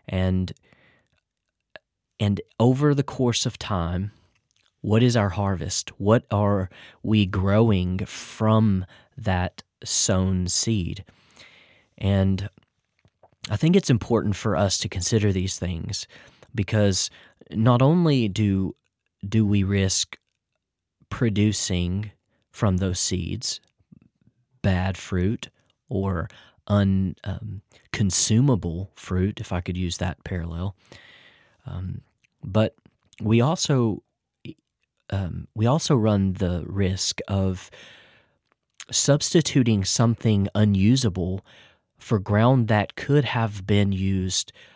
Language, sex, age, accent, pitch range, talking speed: English, male, 30-49, American, 95-115 Hz, 100 wpm